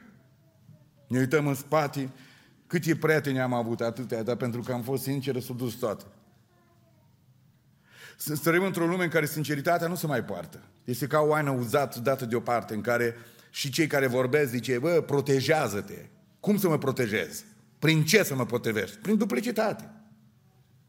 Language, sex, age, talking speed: Romanian, male, 40-59, 160 wpm